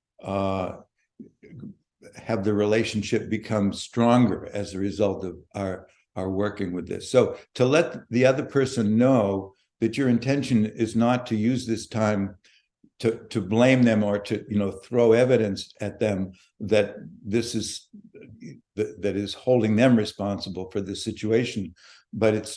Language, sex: English, male